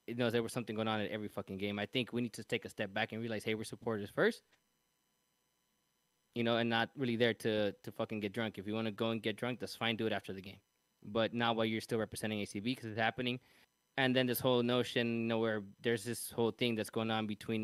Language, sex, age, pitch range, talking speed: English, male, 20-39, 110-120 Hz, 265 wpm